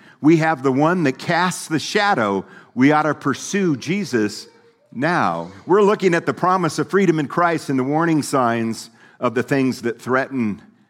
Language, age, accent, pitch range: English, 50-69, American, 105-130 Hz